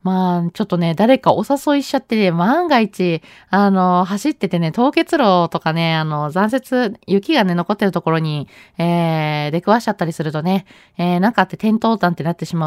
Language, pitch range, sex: Japanese, 175-265 Hz, female